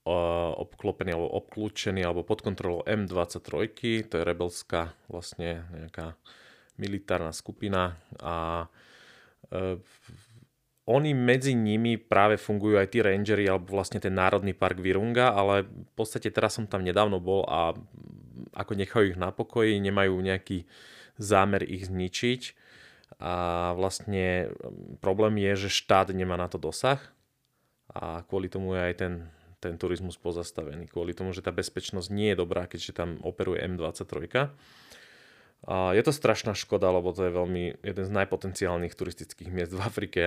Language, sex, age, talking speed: Slovak, male, 30-49, 145 wpm